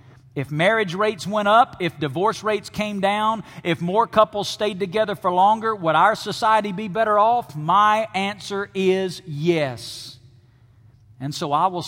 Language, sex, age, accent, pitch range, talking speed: English, male, 50-69, American, 125-195 Hz, 155 wpm